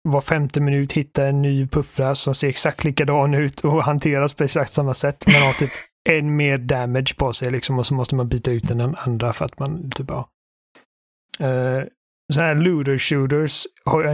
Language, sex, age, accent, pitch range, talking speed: Swedish, male, 30-49, native, 130-150 Hz, 205 wpm